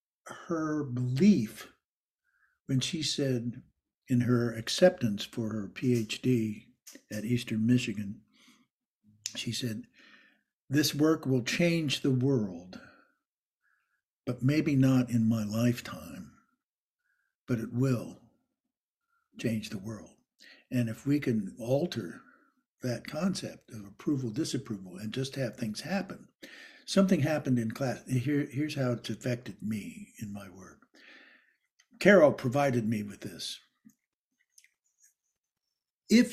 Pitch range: 115-160 Hz